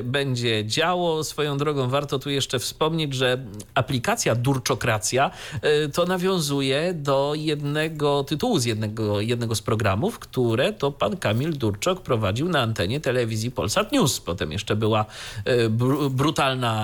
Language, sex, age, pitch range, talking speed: Polish, male, 40-59, 110-150 Hz, 130 wpm